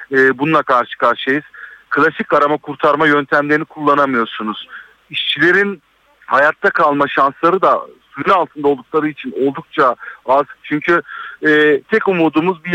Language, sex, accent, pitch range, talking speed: Turkish, male, native, 135-160 Hz, 115 wpm